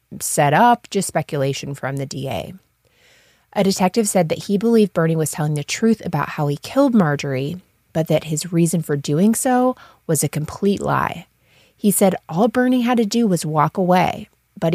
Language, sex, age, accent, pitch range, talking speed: English, female, 20-39, American, 150-200 Hz, 185 wpm